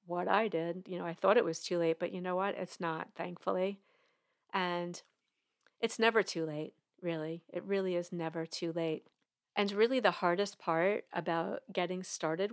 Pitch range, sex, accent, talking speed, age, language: 175-215 Hz, female, American, 180 wpm, 40-59, English